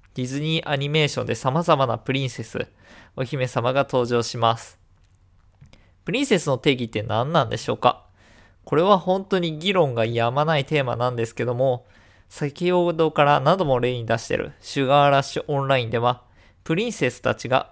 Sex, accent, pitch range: male, native, 120-170 Hz